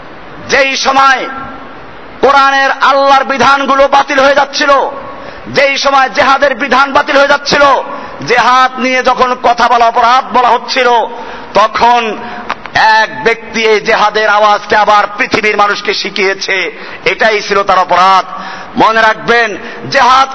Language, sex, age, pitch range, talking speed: Bengali, male, 50-69, 245-300 Hz, 70 wpm